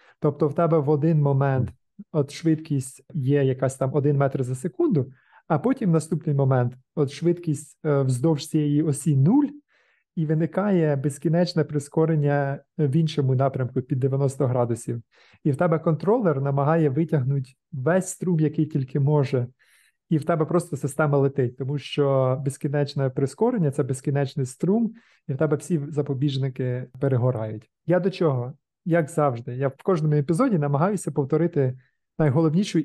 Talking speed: 145 wpm